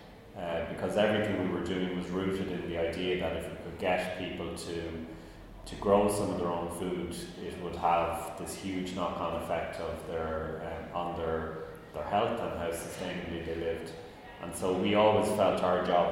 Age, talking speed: 30-49, 190 wpm